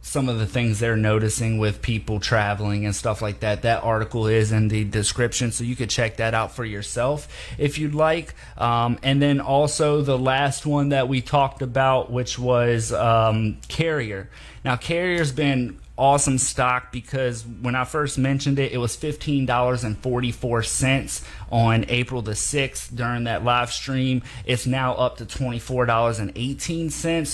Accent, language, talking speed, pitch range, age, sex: American, English, 160 wpm, 110-140 Hz, 30-49, male